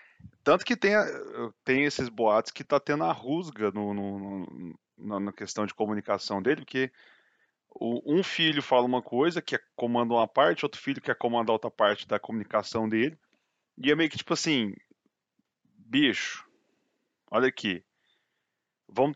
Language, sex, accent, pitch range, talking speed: Portuguese, male, Brazilian, 105-145 Hz, 155 wpm